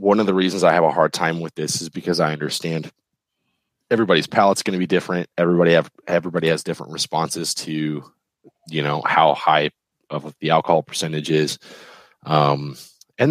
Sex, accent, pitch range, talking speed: male, American, 75-90 Hz, 175 wpm